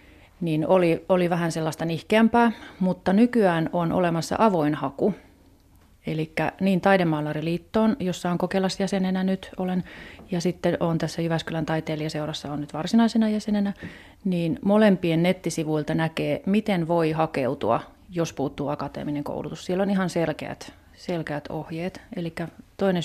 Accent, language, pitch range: native, Finnish, 155-190 Hz